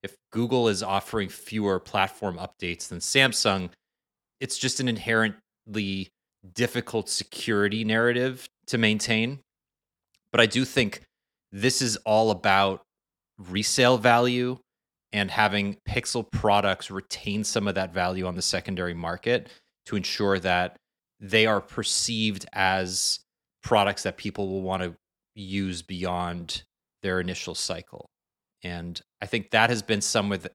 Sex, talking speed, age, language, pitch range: male, 130 wpm, 30-49, English, 95-115 Hz